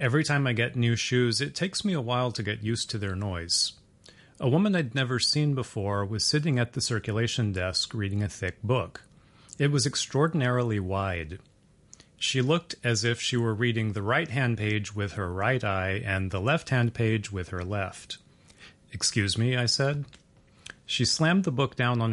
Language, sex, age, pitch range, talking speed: English, male, 30-49, 105-130 Hz, 185 wpm